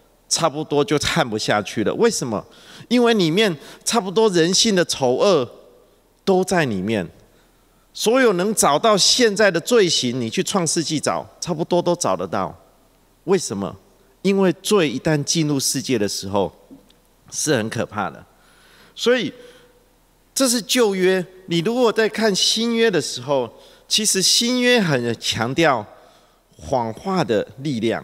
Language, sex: English, male